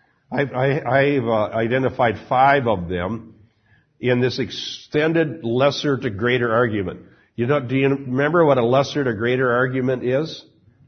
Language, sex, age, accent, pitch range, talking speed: English, male, 60-79, American, 110-135 Hz, 130 wpm